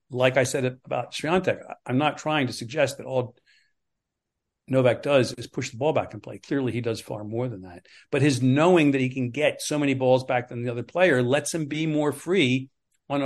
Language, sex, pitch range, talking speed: English, male, 120-140 Hz, 220 wpm